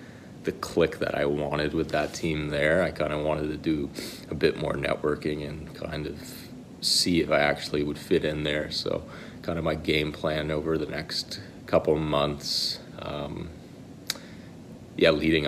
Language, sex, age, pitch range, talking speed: English, male, 30-49, 75-80 Hz, 175 wpm